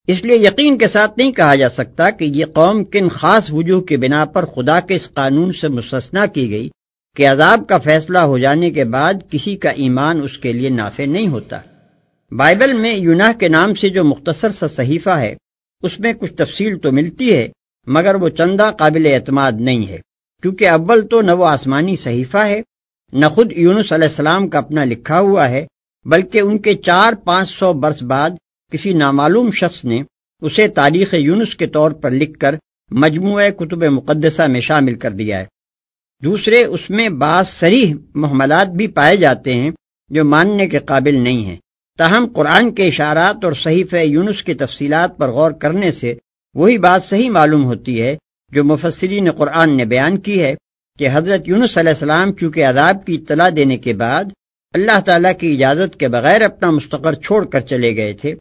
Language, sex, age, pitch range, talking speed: Urdu, male, 60-79, 140-190 Hz, 185 wpm